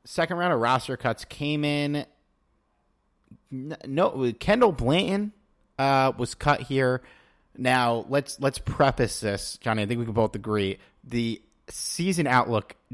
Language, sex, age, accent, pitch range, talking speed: English, male, 30-49, American, 100-125 Hz, 135 wpm